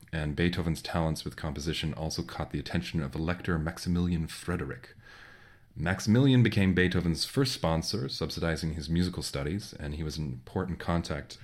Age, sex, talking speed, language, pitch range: 30-49, male, 145 wpm, English, 75-90 Hz